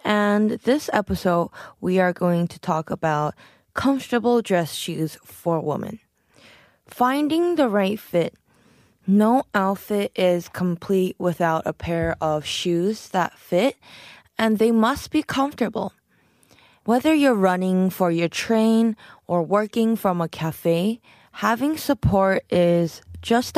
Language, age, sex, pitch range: Korean, 20-39, female, 175-225 Hz